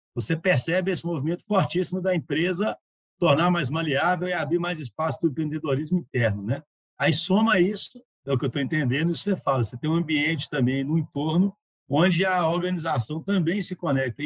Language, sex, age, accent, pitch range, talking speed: Portuguese, male, 60-79, Brazilian, 140-190 Hz, 185 wpm